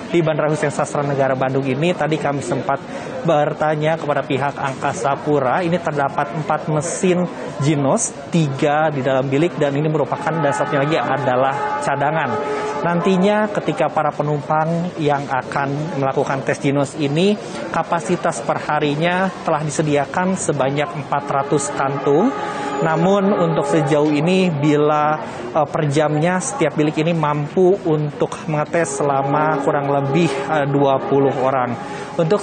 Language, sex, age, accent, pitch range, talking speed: Indonesian, male, 30-49, native, 140-160 Hz, 125 wpm